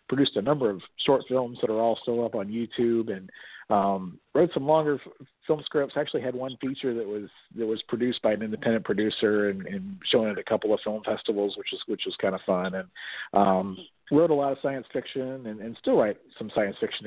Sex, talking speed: male, 225 wpm